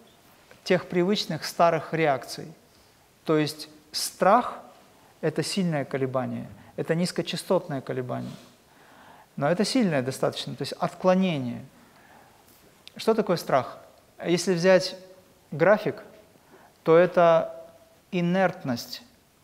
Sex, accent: male, native